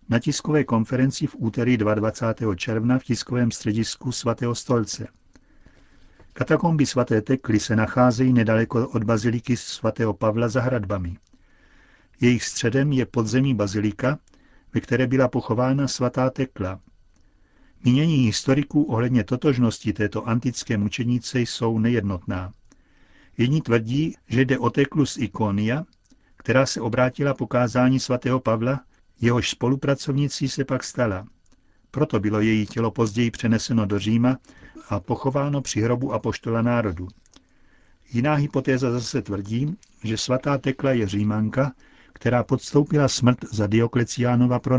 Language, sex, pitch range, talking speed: Czech, male, 110-130 Hz, 125 wpm